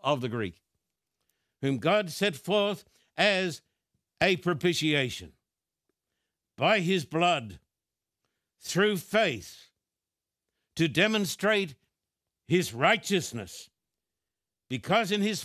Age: 60-79